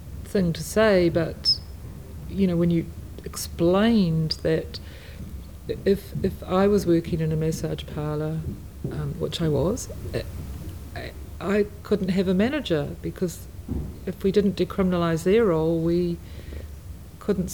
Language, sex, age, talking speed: English, female, 50-69, 125 wpm